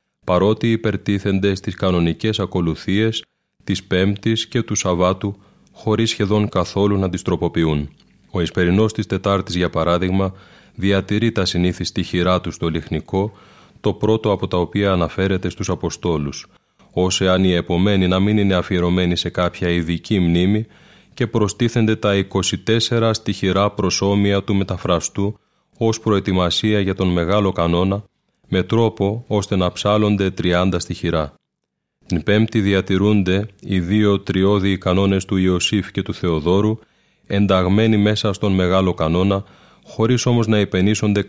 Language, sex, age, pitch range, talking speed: Greek, male, 30-49, 90-105 Hz, 135 wpm